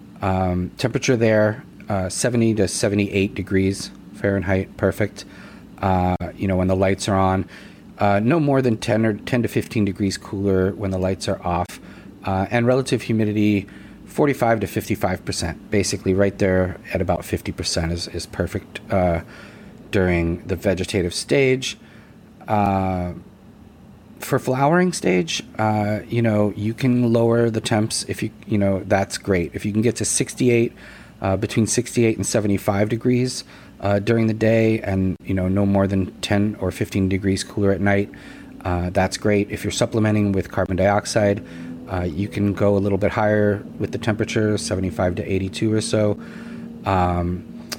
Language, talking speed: English, 160 wpm